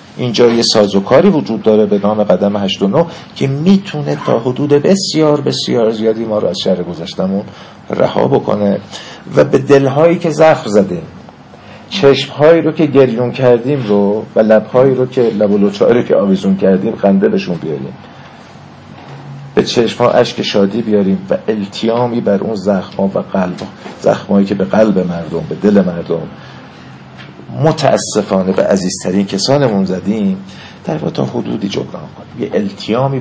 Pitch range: 100-140 Hz